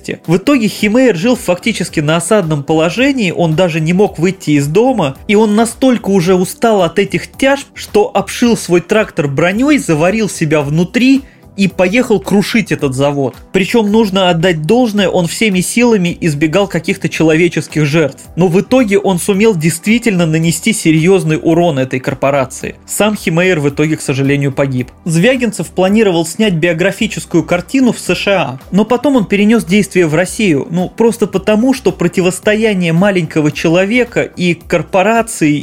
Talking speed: 150 wpm